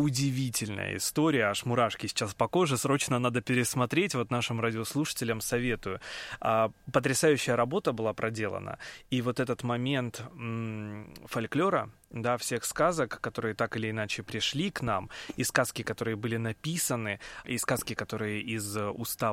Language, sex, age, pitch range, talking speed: Russian, male, 20-39, 110-135 Hz, 130 wpm